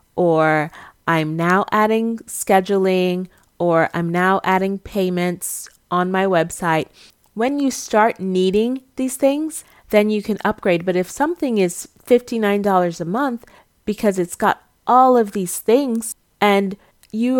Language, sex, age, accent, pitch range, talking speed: English, female, 30-49, American, 180-220 Hz, 135 wpm